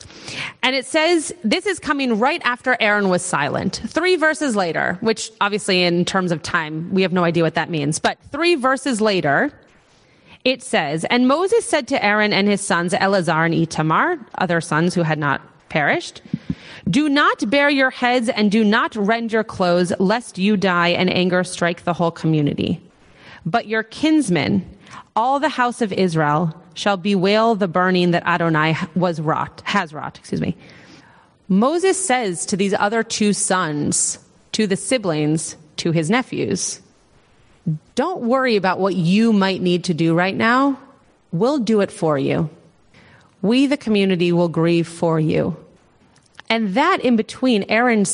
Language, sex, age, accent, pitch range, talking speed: English, female, 30-49, American, 175-245 Hz, 165 wpm